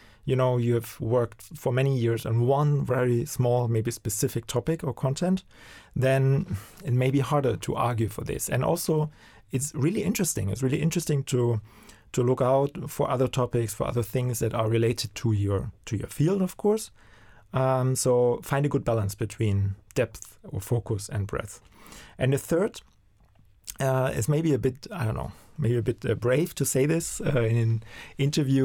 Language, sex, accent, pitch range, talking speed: English, male, German, 115-140 Hz, 185 wpm